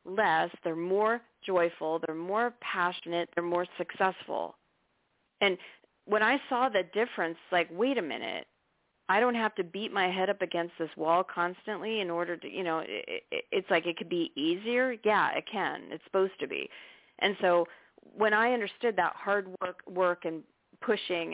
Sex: female